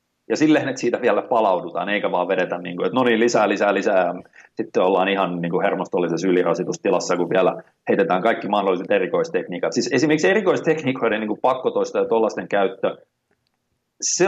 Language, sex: Finnish, male